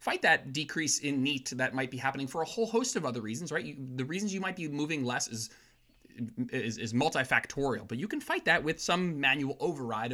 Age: 20-39